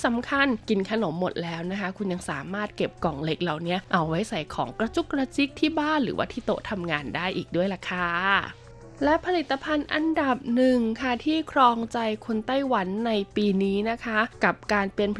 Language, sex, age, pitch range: Thai, female, 20-39, 190-260 Hz